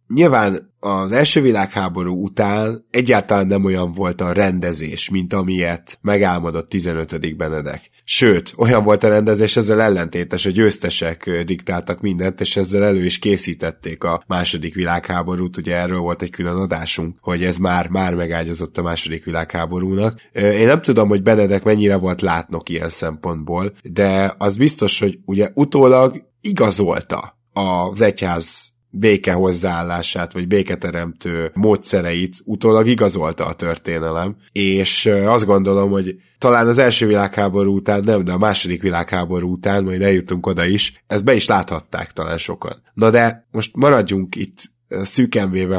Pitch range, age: 90-105 Hz, 20-39